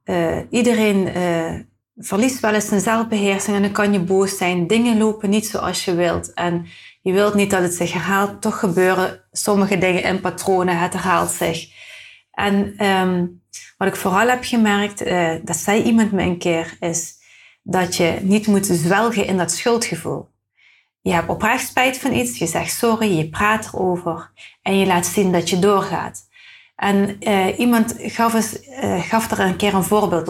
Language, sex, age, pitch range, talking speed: Dutch, female, 30-49, 185-230 Hz, 175 wpm